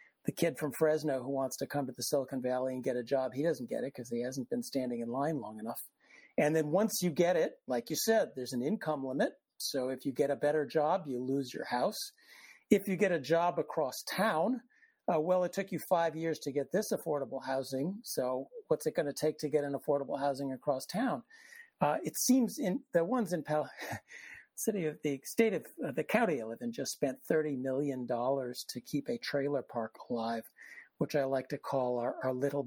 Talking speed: 225 wpm